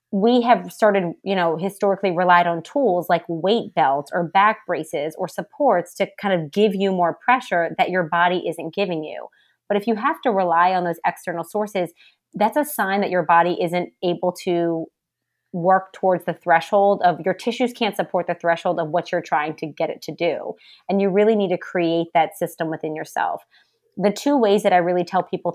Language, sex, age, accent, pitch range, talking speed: English, female, 30-49, American, 170-200 Hz, 205 wpm